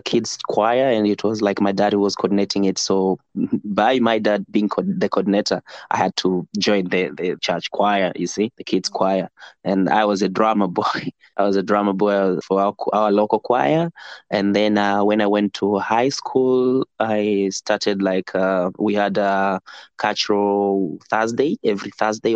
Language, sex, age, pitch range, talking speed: English, male, 20-39, 100-125 Hz, 180 wpm